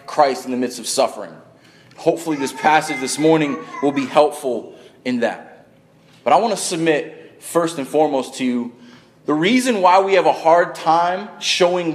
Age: 30-49